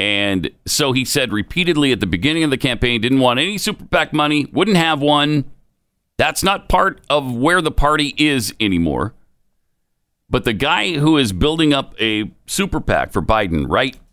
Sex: male